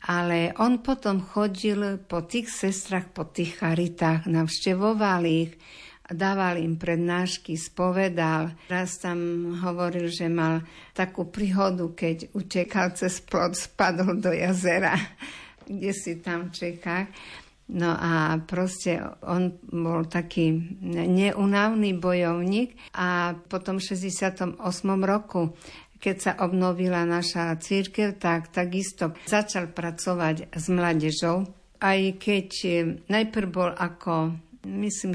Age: 50-69